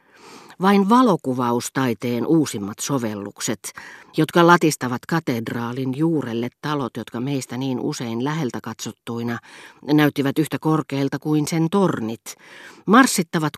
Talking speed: 95 wpm